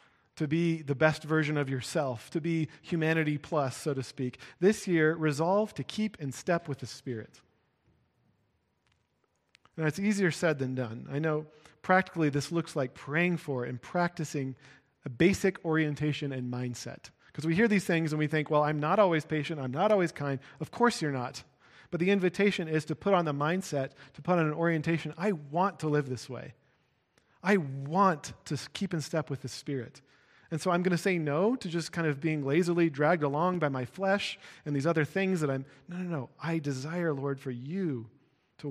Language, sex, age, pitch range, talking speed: English, male, 40-59, 135-170 Hz, 200 wpm